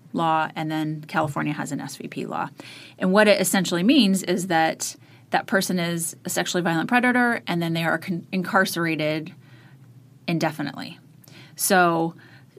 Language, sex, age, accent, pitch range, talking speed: English, female, 30-49, American, 155-190 Hz, 140 wpm